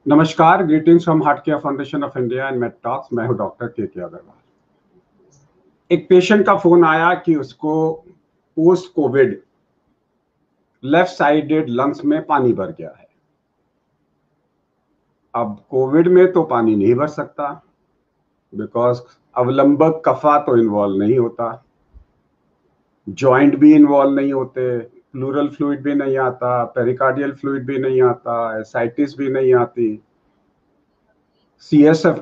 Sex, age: male, 50-69